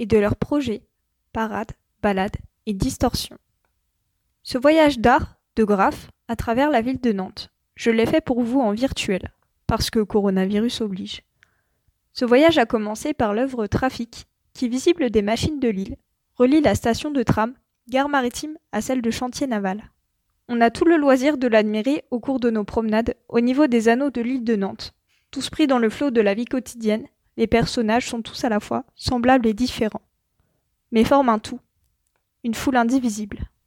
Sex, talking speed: female, 180 wpm